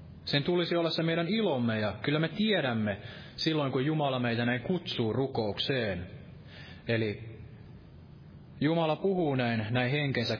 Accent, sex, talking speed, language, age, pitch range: native, male, 135 wpm, Finnish, 20-39, 115-140 Hz